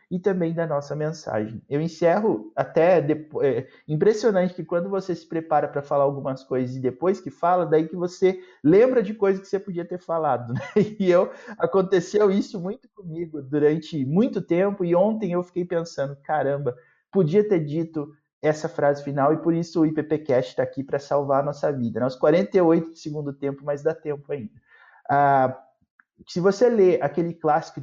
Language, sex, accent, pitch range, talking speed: Portuguese, male, Brazilian, 145-190 Hz, 180 wpm